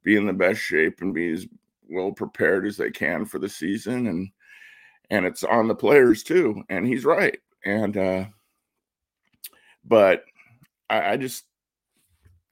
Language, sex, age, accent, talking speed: English, male, 50-69, American, 155 wpm